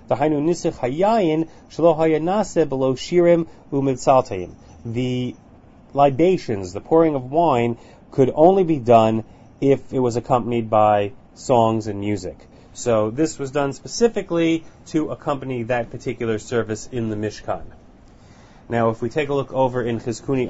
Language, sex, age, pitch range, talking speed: English, male, 30-49, 115-155 Hz, 115 wpm